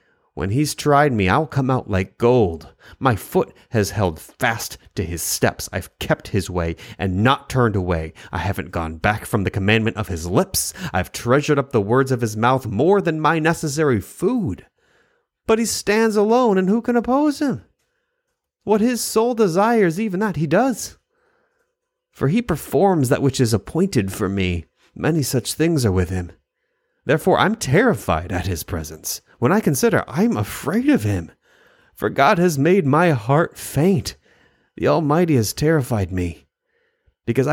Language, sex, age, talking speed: English, male, 30-49, 170 wpm